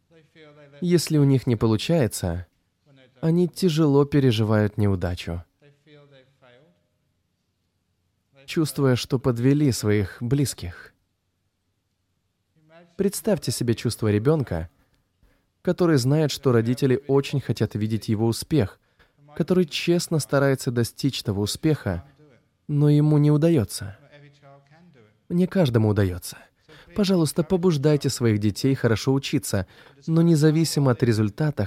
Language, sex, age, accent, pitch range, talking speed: Russian, male, 20-39, native, 105-150 Hz, 95 wpm